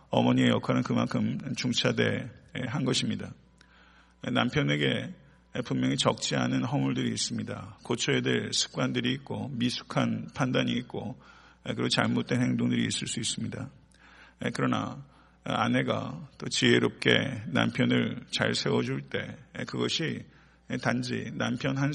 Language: Korean